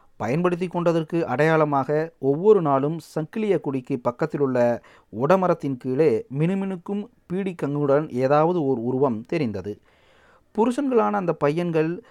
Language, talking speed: Tamil, 100 wpm